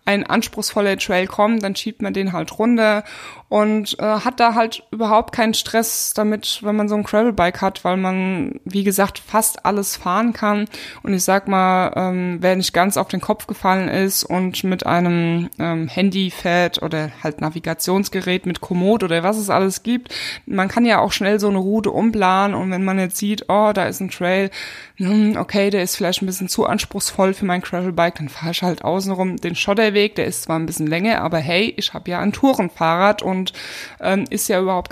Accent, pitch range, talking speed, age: German, 180-215 Hz, 205 wpm, 20-39